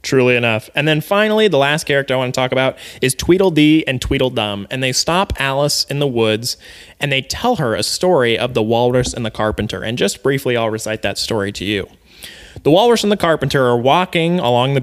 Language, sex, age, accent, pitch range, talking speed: English, male, 20-39, American, 120-155 Hz, 220 wpm